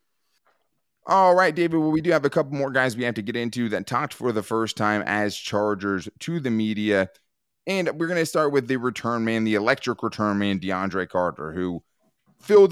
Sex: male